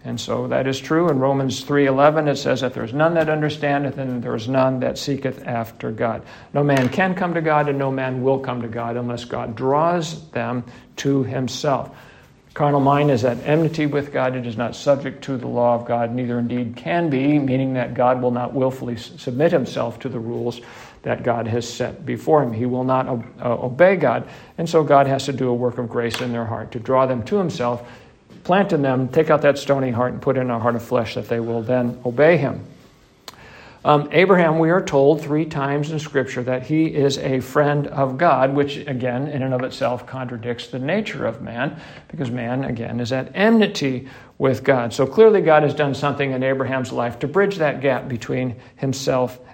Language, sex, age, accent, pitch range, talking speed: English, male, 50-69, American, 125-145 Hz, 210 wpm